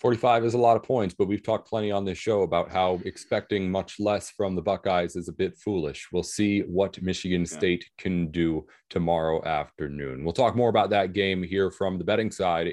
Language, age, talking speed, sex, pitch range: English, 30-49, 210 wpm, male, 90-115 Hz